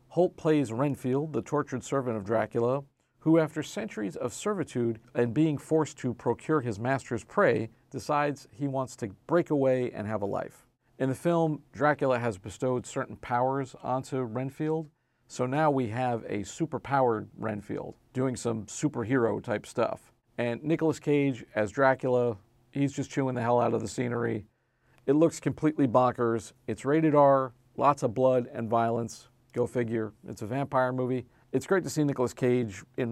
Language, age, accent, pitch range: English, 50-69, American, 120-150 Hz